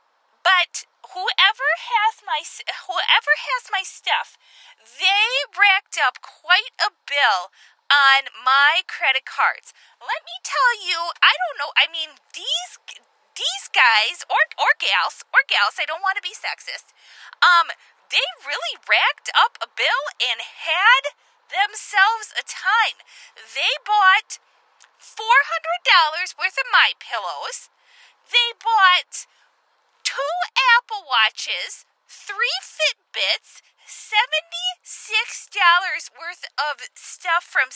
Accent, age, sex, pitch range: American, 20-39, female, 335-445 Hz